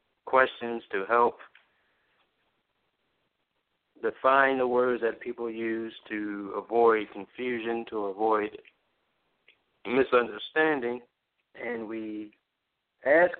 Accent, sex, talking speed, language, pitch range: American, male, 80 wpm, English, 110-130 Hz